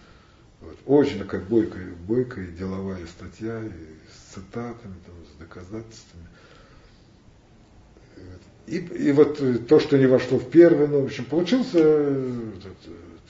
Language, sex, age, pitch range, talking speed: Russian, male, 50-69, 100-130 Hz, 135 wpm